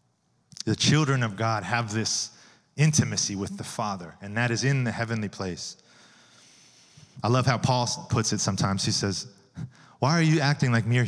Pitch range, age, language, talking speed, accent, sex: 105-130 Hz, 30-49, English, 175 wpm, American, male